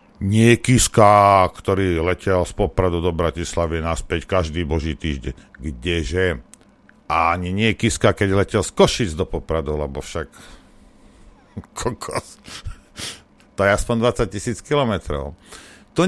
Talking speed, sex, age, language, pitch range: 120 wpm, male, 50-69, Slovak, 85-115 Hz